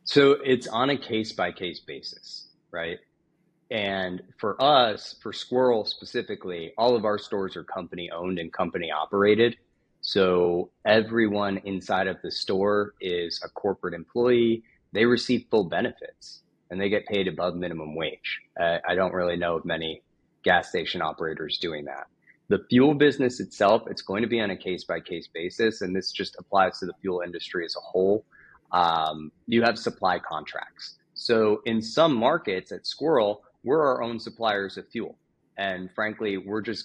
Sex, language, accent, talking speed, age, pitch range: male, English, American, 165 wpm, 30-49, 90-115 Hz